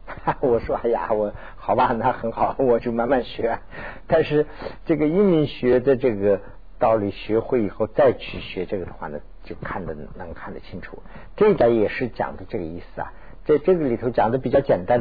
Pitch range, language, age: 110-150 Hz, Chinese, 50-69